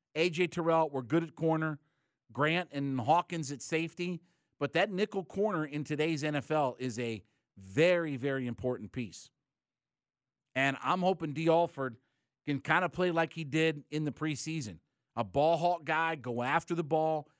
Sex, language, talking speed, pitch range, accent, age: male, English, 160 wpm, 130-165 Hz, American, 40-59